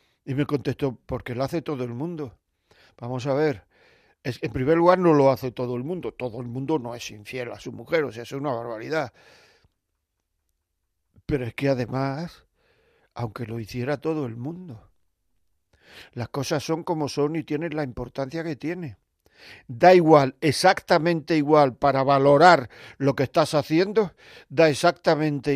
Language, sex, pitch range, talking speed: Spanish, male, 100-160 Hz, 160 wpm